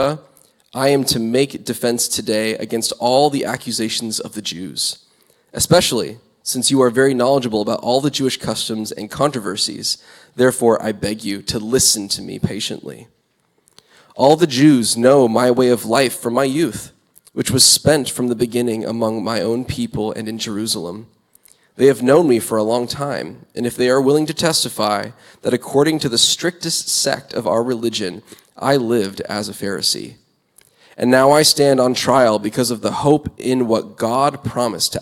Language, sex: English, male